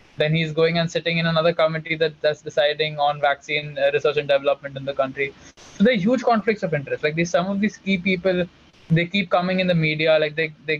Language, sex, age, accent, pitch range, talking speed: English, male, 20-39, Indian, 150-175 Hz, 230 wpm